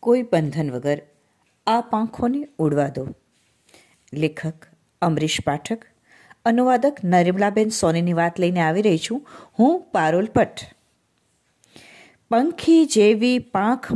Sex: female